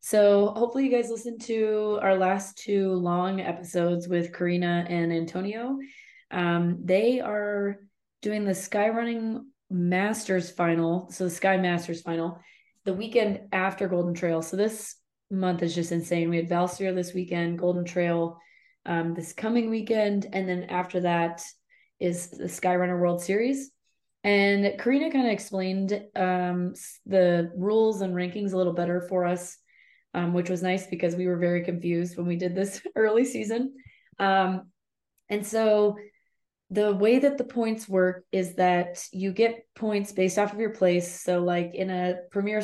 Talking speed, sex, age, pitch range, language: 160 wpm, female, 20-39, 175-210 Hz, English